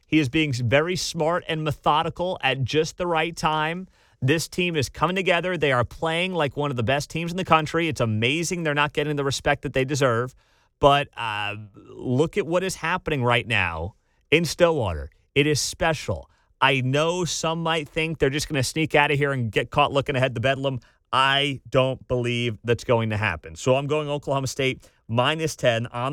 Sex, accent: male, American